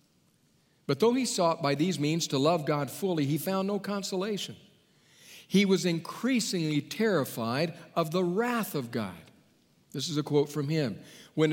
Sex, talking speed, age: male, 160 wpm, 50-69